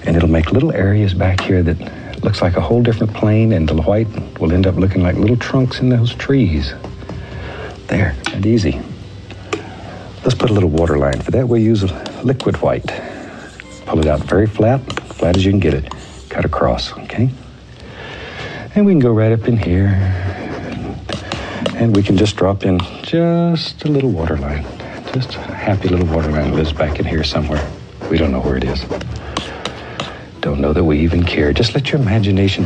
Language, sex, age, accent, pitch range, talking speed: English, male, 60-79, American, 80-110 Hz, 195 wpm